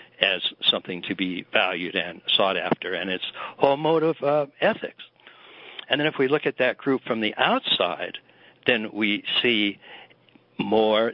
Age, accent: 60-79, American